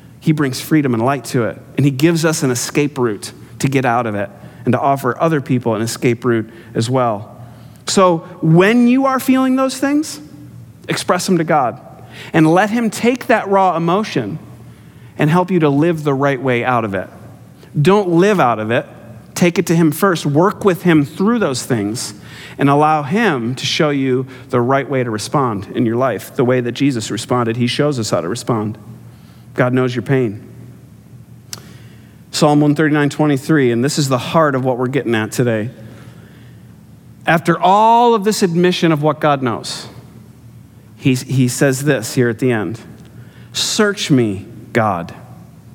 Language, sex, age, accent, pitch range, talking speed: English, male, 40-59, American, 120-165 Hz, 180 wpm